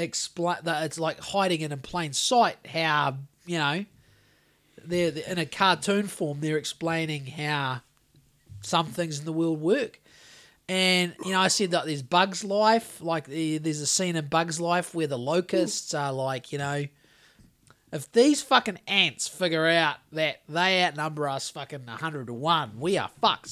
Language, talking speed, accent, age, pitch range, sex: English, 170 wpm, Australian, 20-39, 140-180 Hz, male